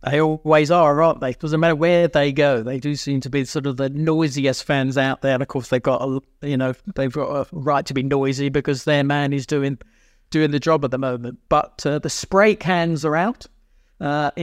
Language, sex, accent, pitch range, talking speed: English, male, British, 140-165 Hz, 235 wpm